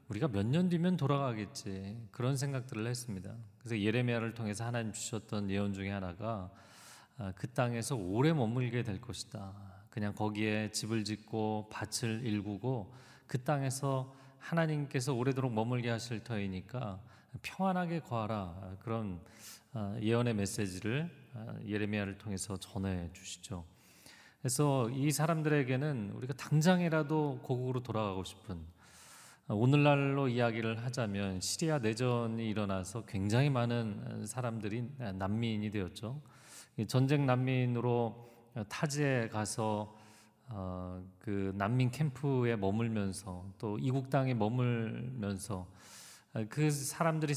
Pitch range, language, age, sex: 105-135 Hz, Korean, 40-59, male